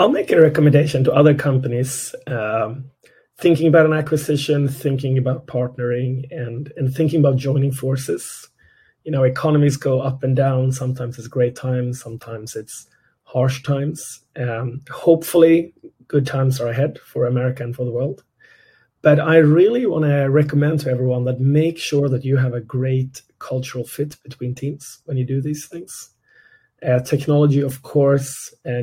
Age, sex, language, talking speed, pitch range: 30-49, male, English, 160 wpm, 130-150 Hz